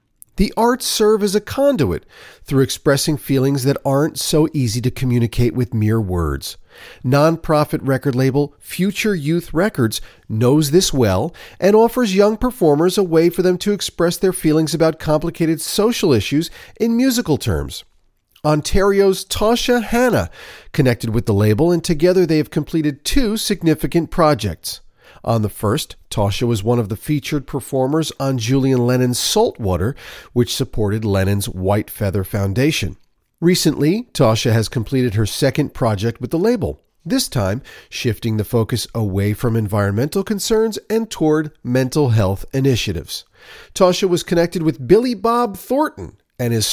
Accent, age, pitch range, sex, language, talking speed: American, 40-59, 115-175 Hz, male, English, 145 wpm